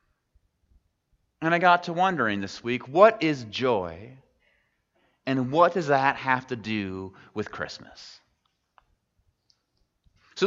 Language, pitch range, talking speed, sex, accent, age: English, 115-160 Hz, 115 wpm, male, American, 30-49